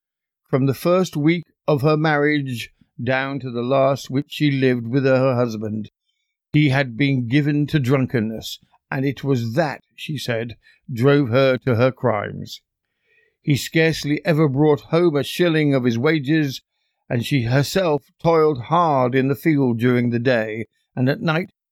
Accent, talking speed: British, 160 wpm